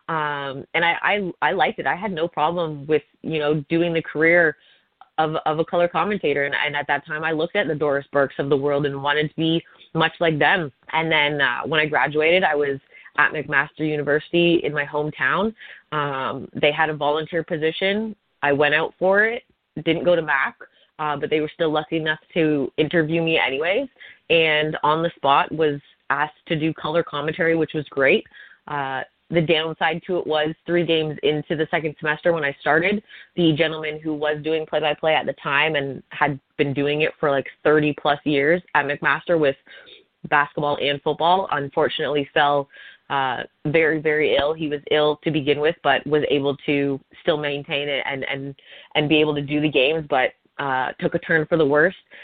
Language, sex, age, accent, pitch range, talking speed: English, female, 20-39, American, 145-165 Hz, 195 wpm